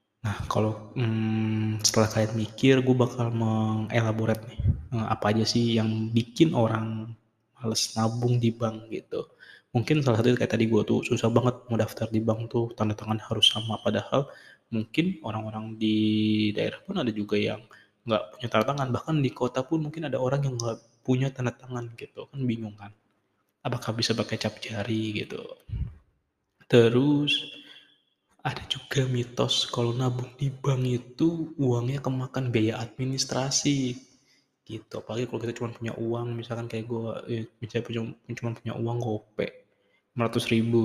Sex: male